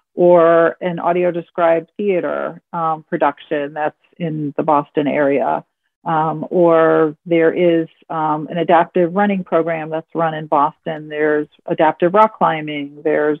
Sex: female